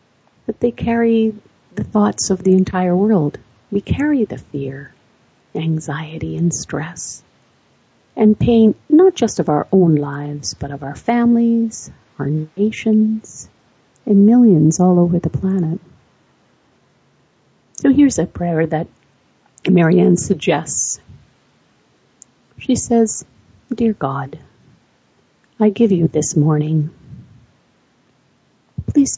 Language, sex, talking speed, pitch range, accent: English, female, 110 wpm, 155-200 Hz, American